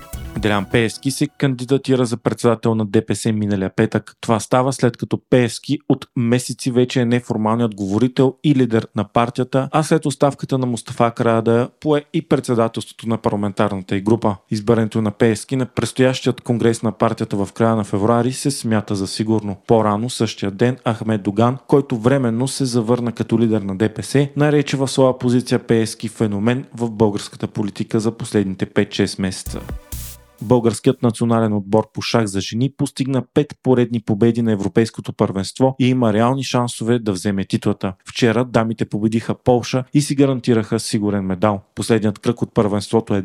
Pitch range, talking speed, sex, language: 110-130 Hz, 160 wpm, male, Bulgarian